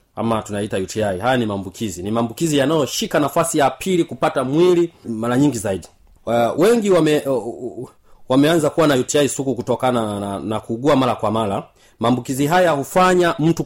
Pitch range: 115-155 Hz